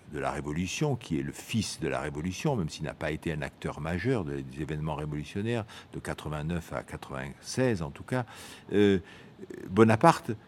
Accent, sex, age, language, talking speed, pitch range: French, male, 60-79, French, 170 wpm, 85-115 Hz